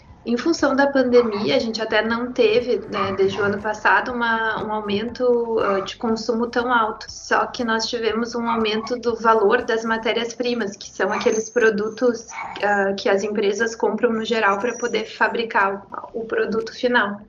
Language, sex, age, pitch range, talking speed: Portuguese, female, 20-39, 215-245 Hz, 175 wpm